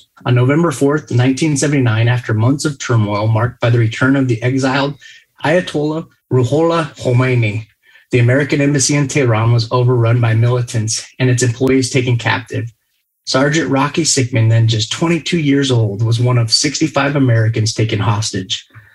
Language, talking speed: English, 150 wpm